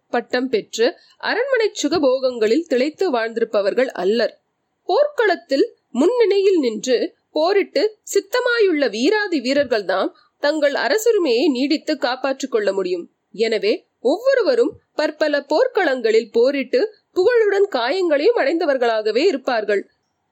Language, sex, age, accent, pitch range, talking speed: Tamil, female, 30-49, native, 255-410 Hz, 90 wpm